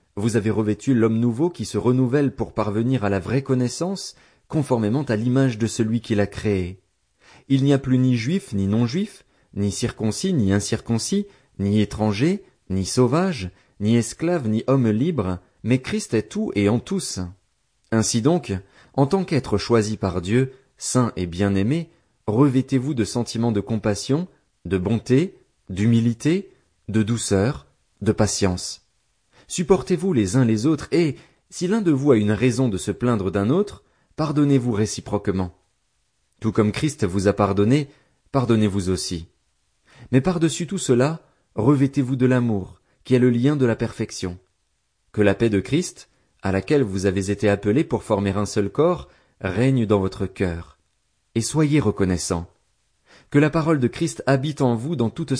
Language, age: French, 30-49